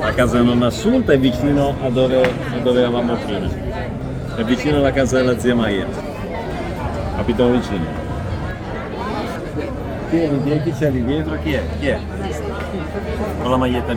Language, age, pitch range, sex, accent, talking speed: Italian, 30-49, 100-135 Hz, male, native, 135 wpm